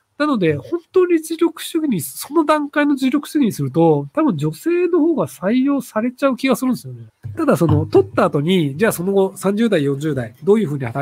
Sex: male